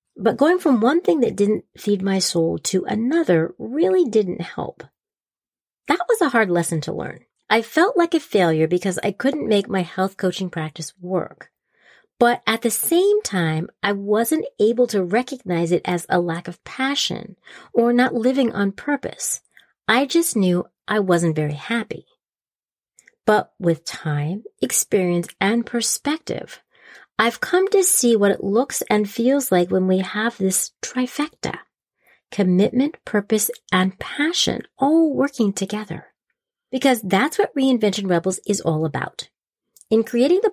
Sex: female